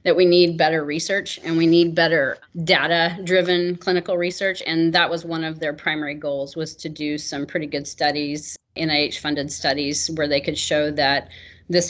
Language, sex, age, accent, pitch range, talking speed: English, female, 30-49, American, 150-175 Hz, 175 wpm